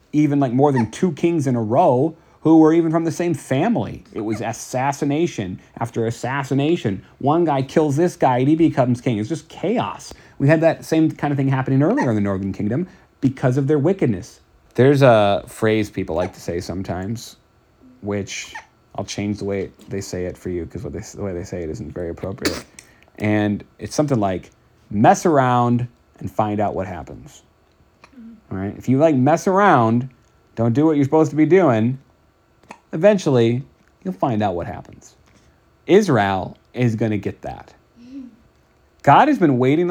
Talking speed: 180 wpm